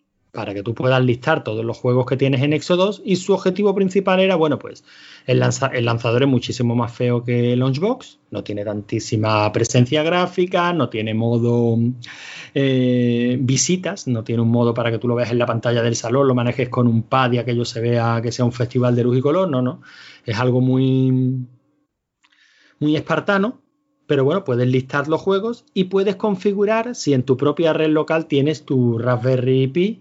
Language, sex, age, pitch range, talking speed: Spanish, male, 30-49, 120-170 Hz, 195 wpm